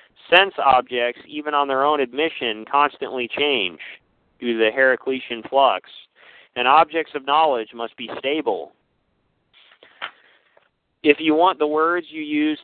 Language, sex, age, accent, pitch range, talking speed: English, male, 40-59, American, 125-160 Hz, 135 wpm